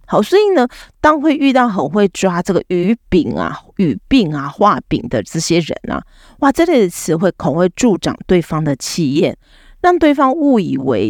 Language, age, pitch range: Chinese, 30-49, 155-220 Hz